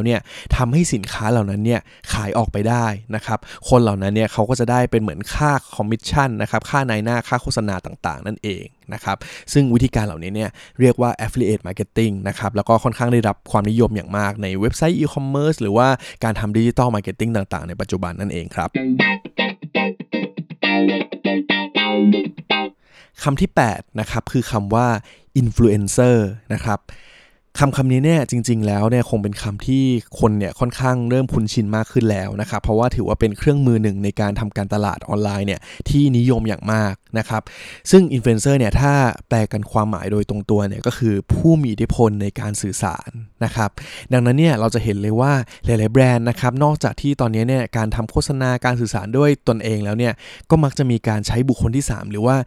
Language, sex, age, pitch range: Thai, male, 20-39, 105-125 Hz